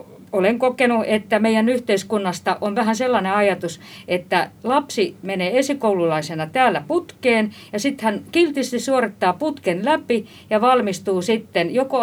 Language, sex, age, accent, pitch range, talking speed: Finnish, female, 50-69, native, 185-250 Hz, 130 wpm